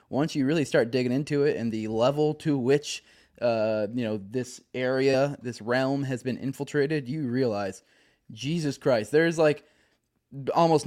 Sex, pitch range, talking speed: male, 120-150 Hz, 165 wpm